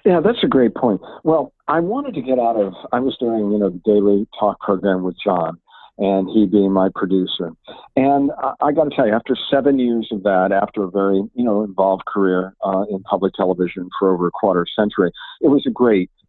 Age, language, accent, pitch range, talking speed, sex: 50-69, English, American, 100-130 Hz, 230 wpm, male